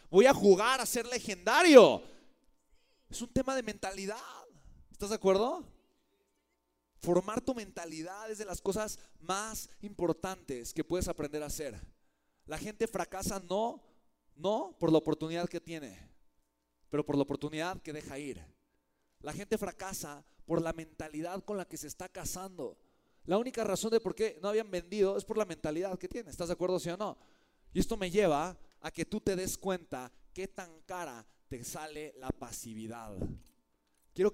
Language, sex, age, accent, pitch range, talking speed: Spanish, male, 30-49, Mexican, 145-205 Hz, 170 wpm